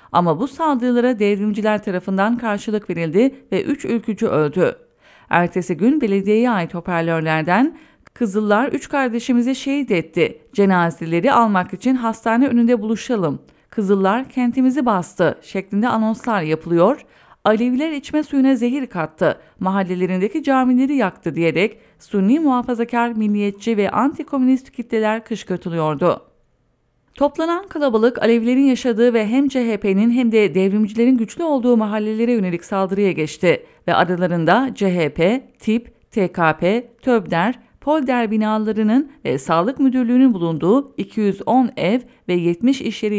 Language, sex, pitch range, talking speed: English, female, 190-255 Hz, 115 wpm